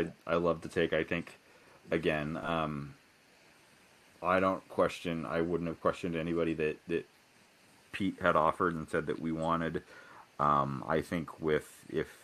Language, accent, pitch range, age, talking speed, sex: English, American, 70-80 Hz, 30-49, 155 wpm, male